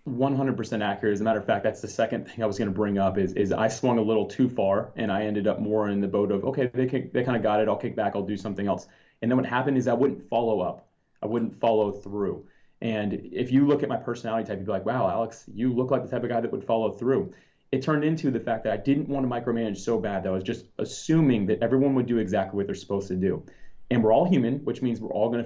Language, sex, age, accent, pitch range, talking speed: English, male, 30-49, American, 110-130 Hz, 290 wpm